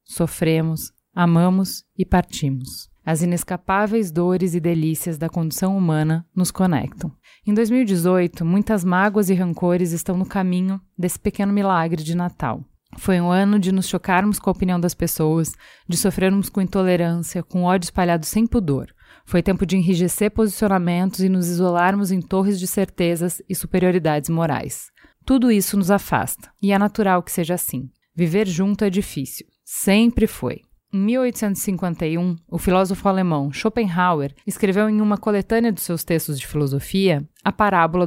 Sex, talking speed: female, 150 wpm